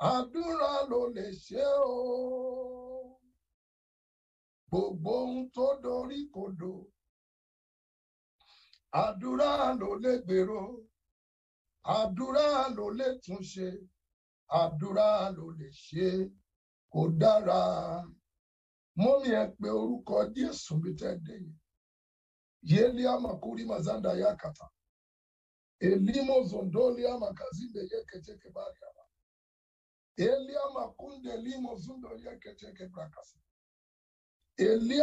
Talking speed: 70 wpm